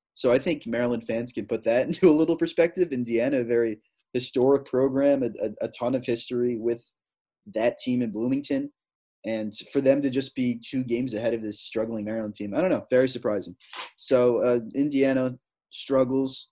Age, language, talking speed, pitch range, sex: 20-39, English, 185 wpm, 125-160 Hz, male